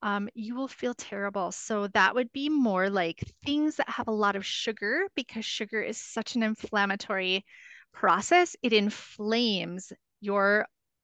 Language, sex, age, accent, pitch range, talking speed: English, female, 30-49, American, 195-230 Hz, 150 wpm